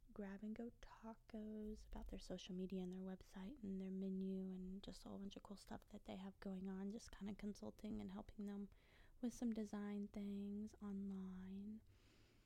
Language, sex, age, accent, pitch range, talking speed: English, female, 20-39, American, 195-220 Hz, 190 wpm